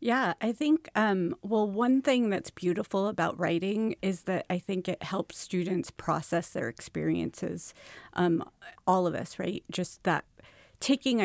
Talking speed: 155 wpm